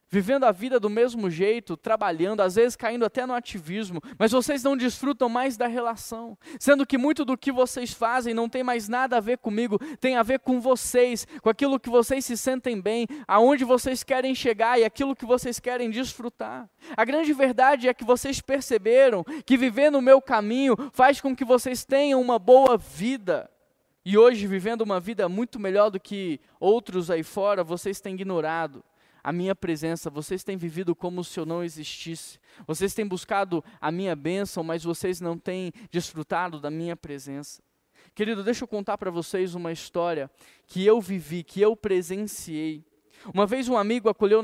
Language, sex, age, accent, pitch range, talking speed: Portuguese, male, 10-29, Brazilian, 185-250 Hz, 180 wpm